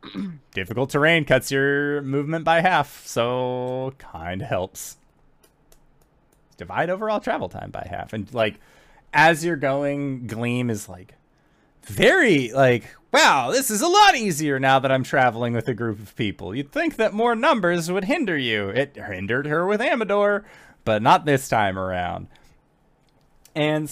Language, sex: English, male